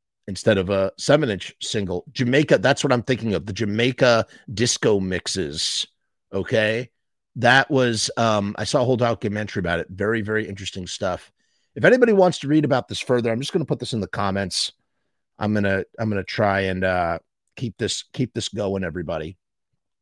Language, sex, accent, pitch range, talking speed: English, male, American, 100-135 Hz, 190 wpm